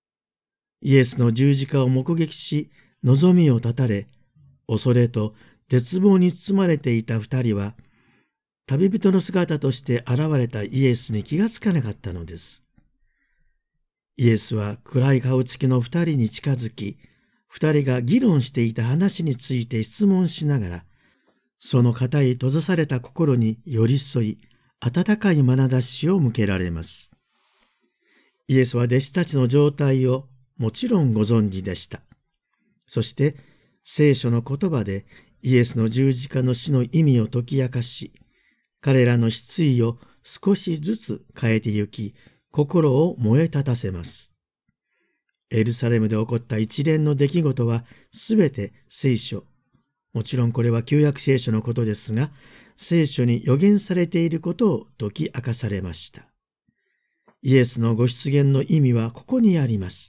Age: 50-69